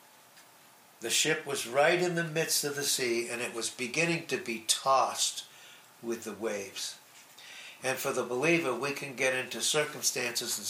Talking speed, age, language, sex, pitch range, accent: 170 wpm, 60-79, English, male, 120-155 Hz, American